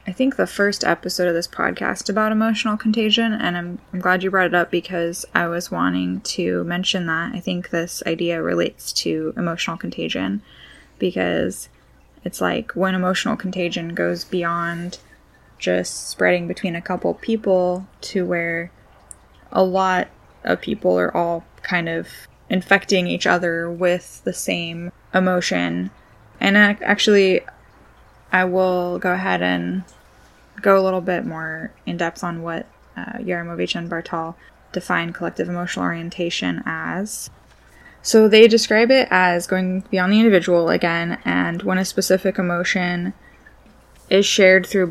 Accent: American